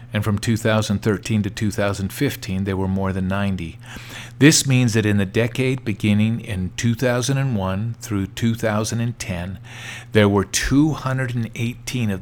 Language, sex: English, male